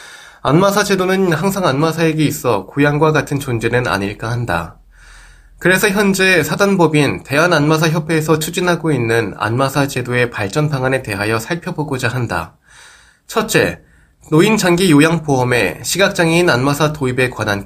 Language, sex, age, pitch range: Korean, male, 20-39, 125-165 Hz